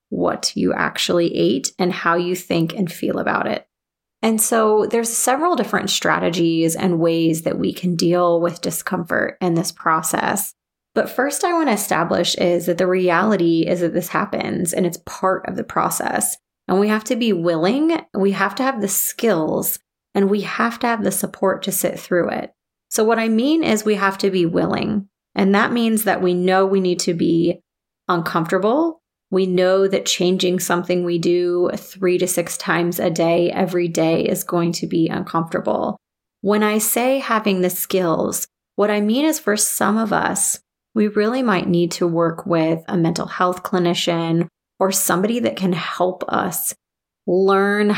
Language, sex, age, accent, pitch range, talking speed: English, female, 30-49, American, 175-210 Hz, 180 wpm